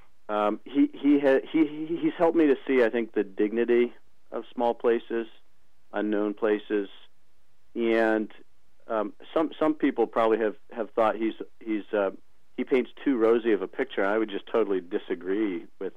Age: 50-69